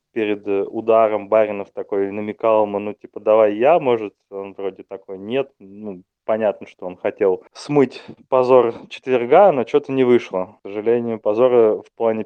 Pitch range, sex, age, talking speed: 105-120 Hz, male, 20-39, 155 wpm